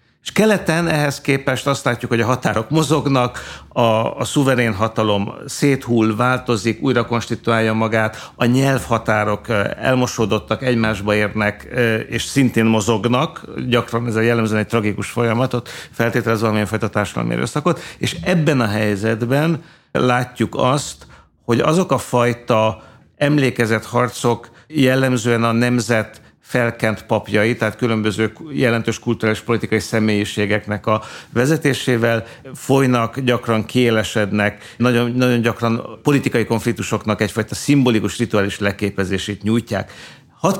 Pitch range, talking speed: 110-130 Hz, 115 wpm